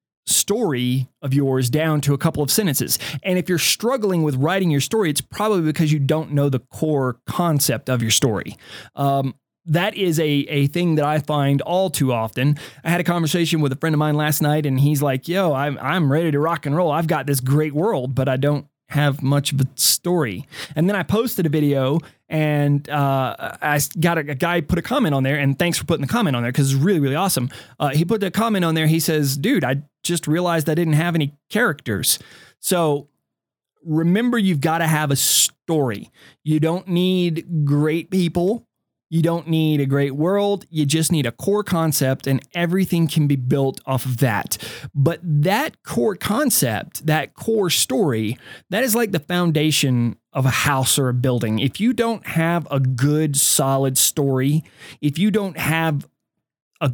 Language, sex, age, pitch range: English, male, 20-39, 140-170 Hz